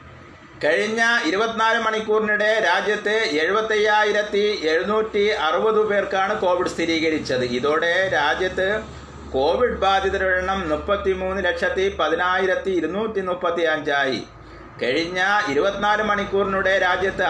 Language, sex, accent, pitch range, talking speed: Malayalam, male, native, 160-210 Hz, 75 wpm